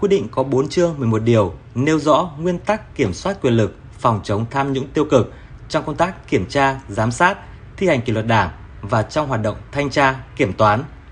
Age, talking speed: 20-39, 220 wpm